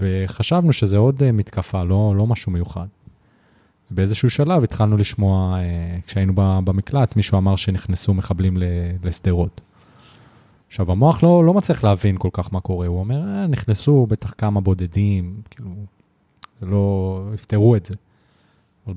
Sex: male